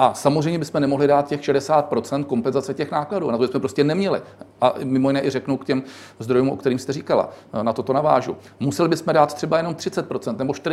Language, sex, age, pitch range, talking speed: Czech, male, 40-59, 130-150 Hz, 205 wpm